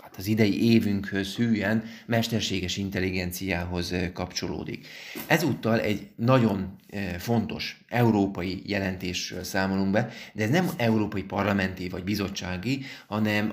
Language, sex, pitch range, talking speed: Hungarian, male, 95-110 Hz, 100 wpm